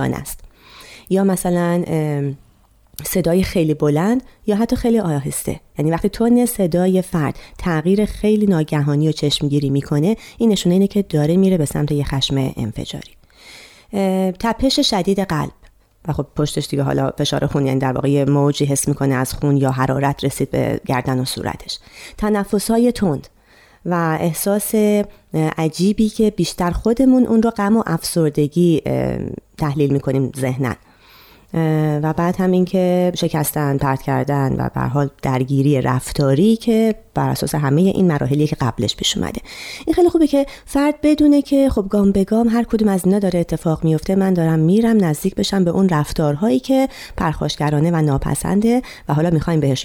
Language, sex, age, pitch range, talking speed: Persian, female, 30-49, 145-200 Hz, 155 wpm